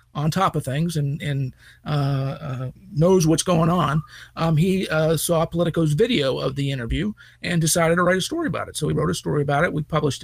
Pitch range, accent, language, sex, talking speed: 145-165 Hz, American, English, male, 225 wpm